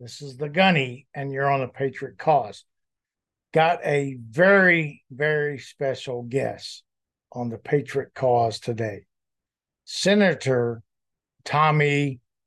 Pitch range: 120-160 Hz